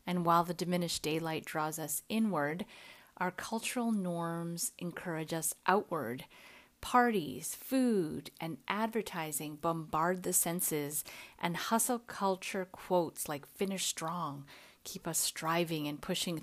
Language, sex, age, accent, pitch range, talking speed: English, female, 30-49, American, 160-210 Hz, 120 wpm